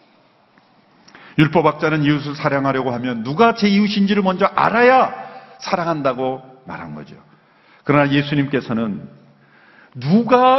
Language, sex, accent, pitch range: Korean, male, native, 130-210 Hz